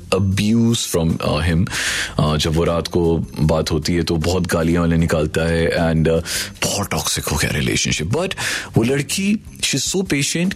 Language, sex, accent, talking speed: Hindi, male, native, 165 wpm